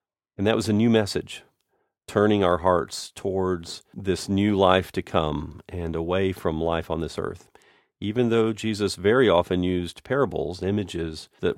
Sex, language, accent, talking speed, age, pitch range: male, English, American, 160 wpm, 40-59, 85-110 Hz